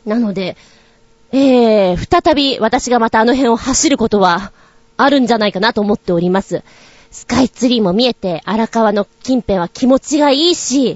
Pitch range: 210-290 Hz